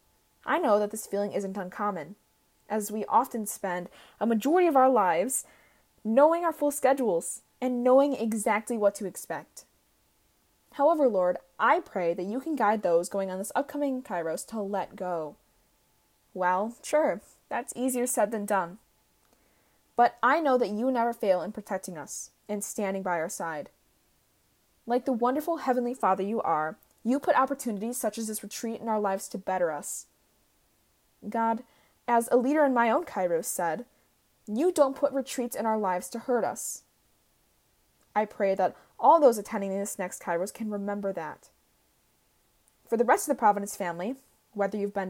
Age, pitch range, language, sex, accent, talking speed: 20-39, 195-255 Hz, English, female, American, 170 wpm